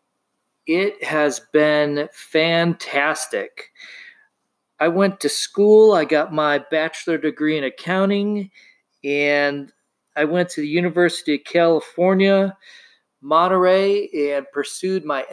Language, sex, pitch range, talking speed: English, male, 150-195 Hz, 105 wpm